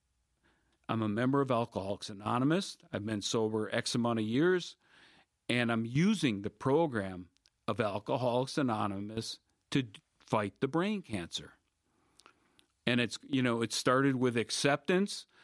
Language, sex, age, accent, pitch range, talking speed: English, male, 40-59, American, 110-140 Hz, 130 wpm